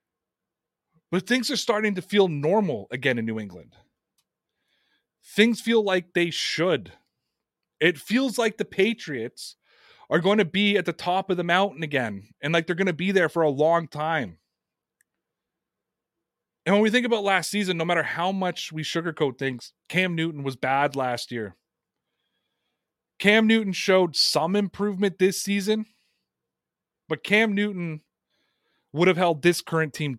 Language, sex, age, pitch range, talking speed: English, male, 30-49, 150-195 Hz, 155 wpm